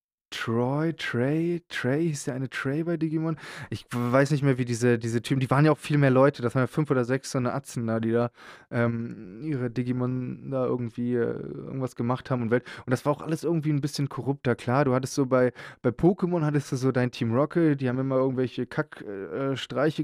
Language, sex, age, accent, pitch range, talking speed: German, male, 20-39, German, 120-150 Hz, 220 wpm